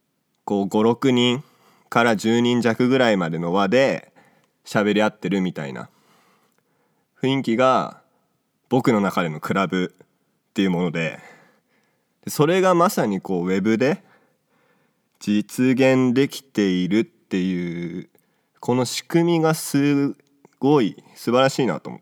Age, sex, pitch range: 20-39, male, 95-130 Hz